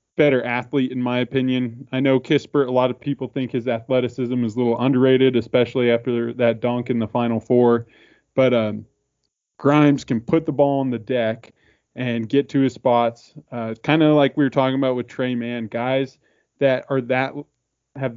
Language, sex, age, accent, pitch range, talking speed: English, male, 20-39, American, 115-130 Hz, 190 wpm